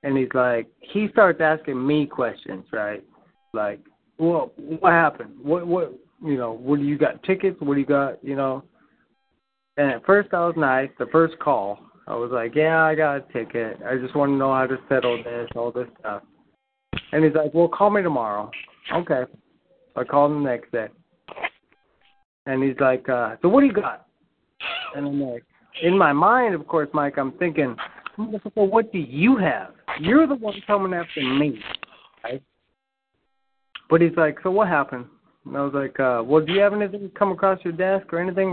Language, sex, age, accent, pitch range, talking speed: English, male, 20-39, American, 140-195 Hz, 200 wpm